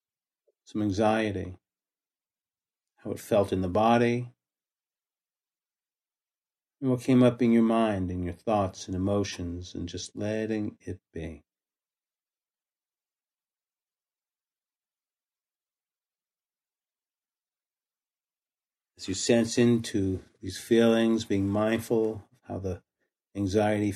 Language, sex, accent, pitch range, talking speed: English, male, American, 95-115 Hz, 95 wpm